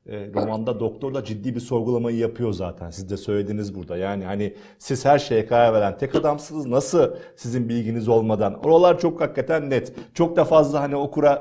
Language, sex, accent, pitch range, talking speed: Turkish, male, native, 125-180 Hz, 180 wpm